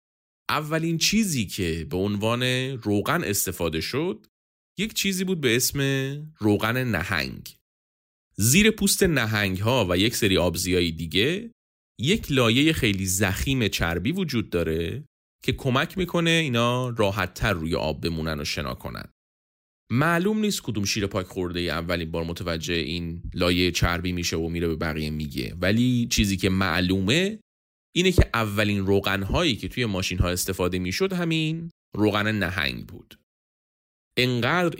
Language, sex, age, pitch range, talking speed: Persian, male, 30-49, 90-130 Hz, 145 wpm